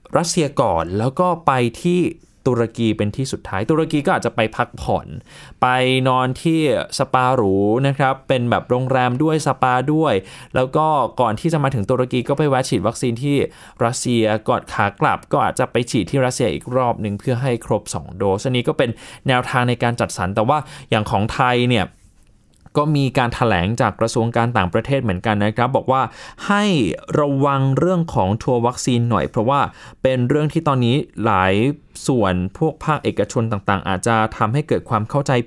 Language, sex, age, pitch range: Thai, male, 20-39, 110-140 Hz